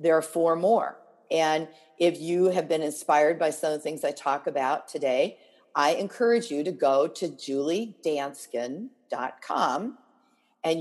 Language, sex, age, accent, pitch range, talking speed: English, female, 50-69, American, 155-205 Hz, 150 wpm